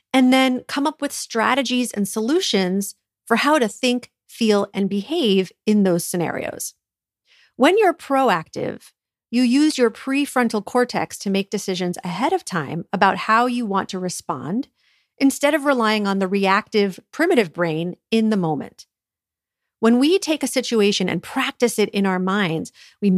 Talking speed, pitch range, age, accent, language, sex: 160 wpm, 185-250 Hz, 40-59, American, English, female